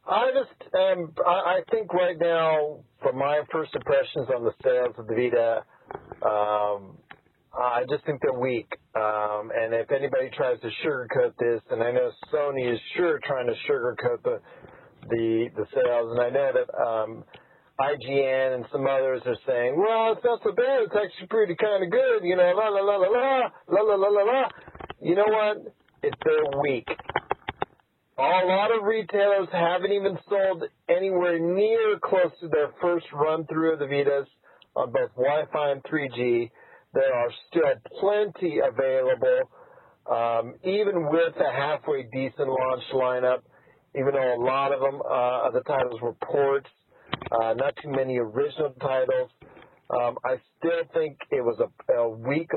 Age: 50-69